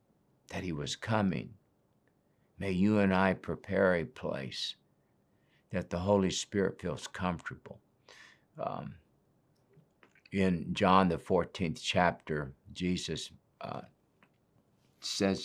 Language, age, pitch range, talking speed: English, 60-79, 90-110 Hz, 100 wpm